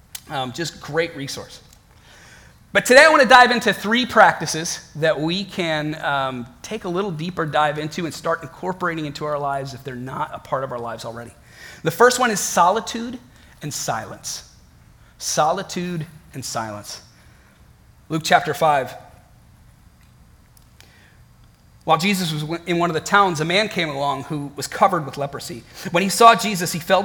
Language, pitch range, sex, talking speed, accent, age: English, 135-185 Hz, male, 165 wpm, American, 30-49